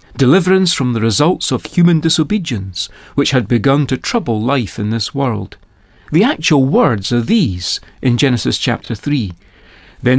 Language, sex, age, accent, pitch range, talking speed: English, male, 40-59, British, 110-165 Hz, 155 wpm